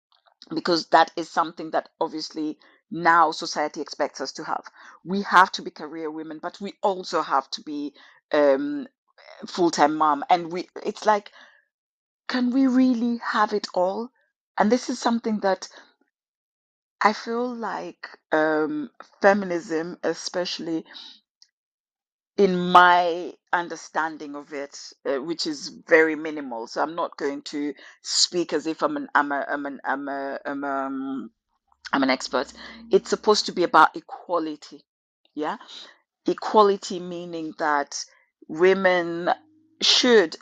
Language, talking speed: English, 135 wpm